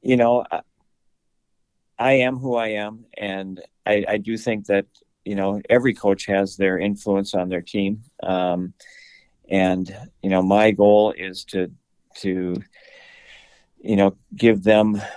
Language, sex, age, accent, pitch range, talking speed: English, male, 50-69, American, 95-110 Hz, 140 wpm